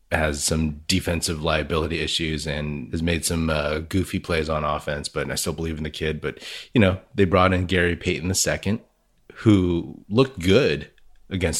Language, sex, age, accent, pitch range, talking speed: English, male, 30-49, American, 80-95 Hz, 185 wpm